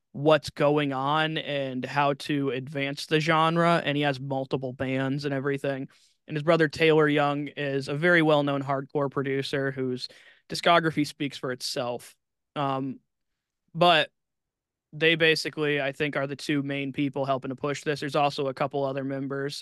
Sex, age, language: male, 20-39, English